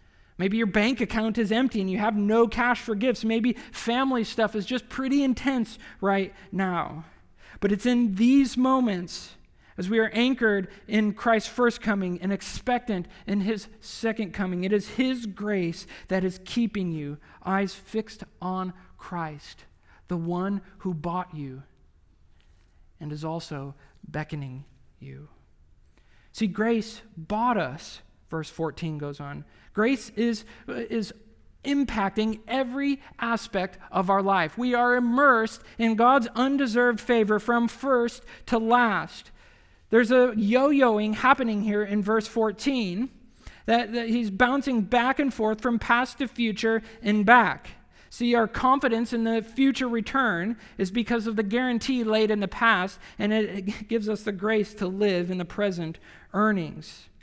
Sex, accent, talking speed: male, American, 145 wpm